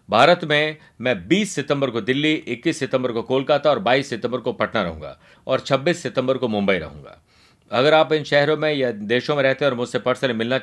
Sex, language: male, Hindi